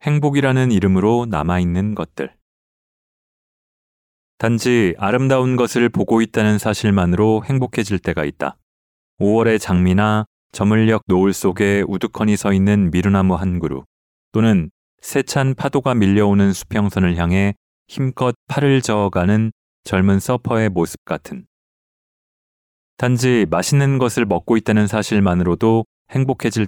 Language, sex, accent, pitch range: Korean, male, native, 95-115 Hz